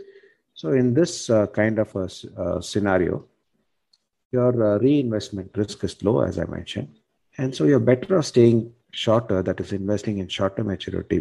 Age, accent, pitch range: 50-69, Indian, 90-110 Hz